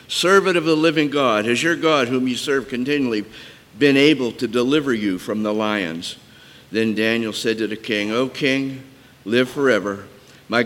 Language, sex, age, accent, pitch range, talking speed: English, male, 50-69, American, 105-135 Hz, 175 wpm